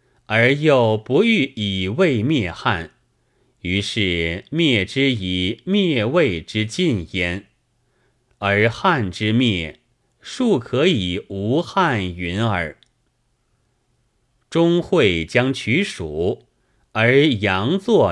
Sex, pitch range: male, 95-130 Hz